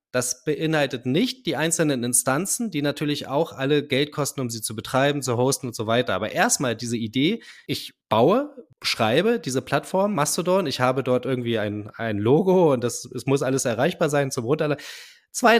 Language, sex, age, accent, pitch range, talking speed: German, male, 20-39, German, 125-155 Hz, 185 wpm